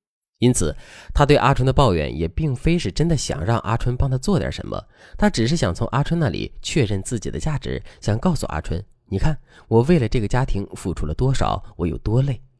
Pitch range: 95-150 Hz